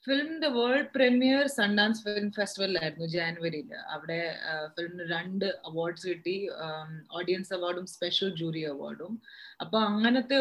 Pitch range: 180-220 Hz